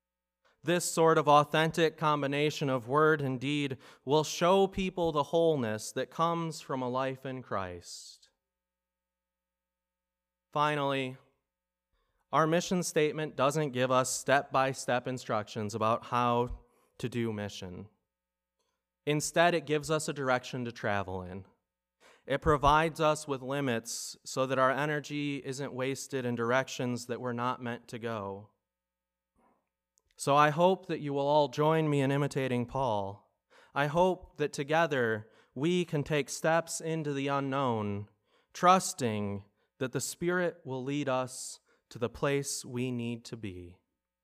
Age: 30-49